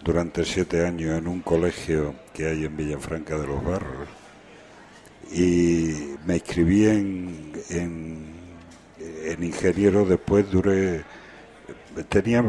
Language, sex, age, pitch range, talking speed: Spanish, male, 60-79, 85-100 Hz, 110 wpm